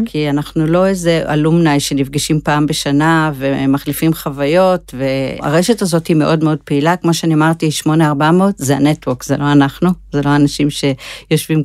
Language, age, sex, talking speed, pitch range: Hebrew, 50-69, female, 150 wpm, 145-185 Hz